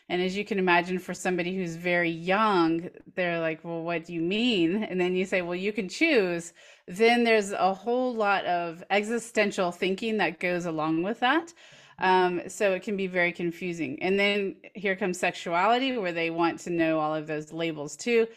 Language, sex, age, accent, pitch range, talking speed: English, female, 30-49, American, 165-200 Hz, 195 wpm